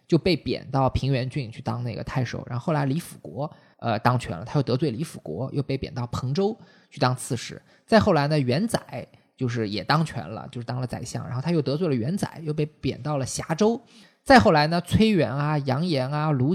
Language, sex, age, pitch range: Chinese, male, 20-39, 130-170 Hz